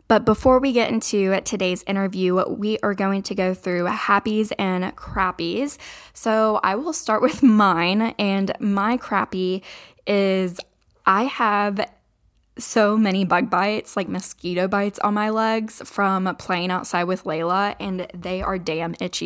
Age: 10-29